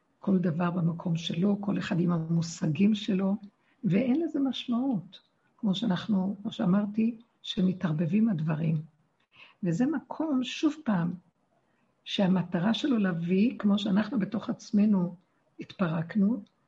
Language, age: Hebrew, 60-79